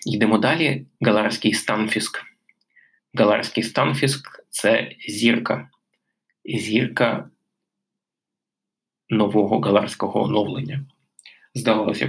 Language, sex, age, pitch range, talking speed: Ukrainian, male, 20-39, 105-120 Hz, 65 wpm